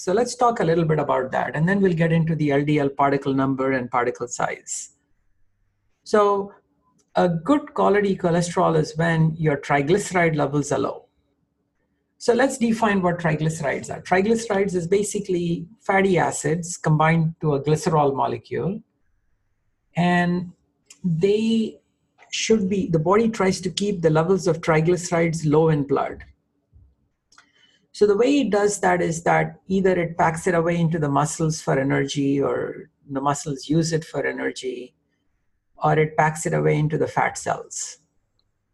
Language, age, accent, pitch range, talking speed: English, 50-69, Indian, 145-180 Hz, 150 wpm